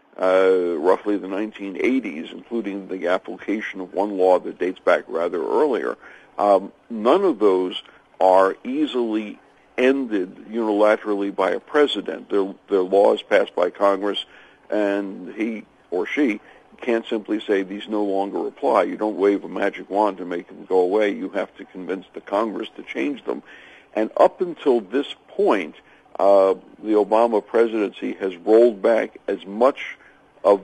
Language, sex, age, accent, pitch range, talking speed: English, male, 60-79, American, 95-115 Hz, 155 wpm